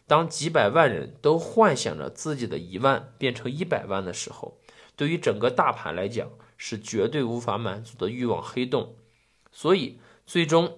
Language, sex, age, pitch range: Chinese, male, 20-39, 115-150 Hz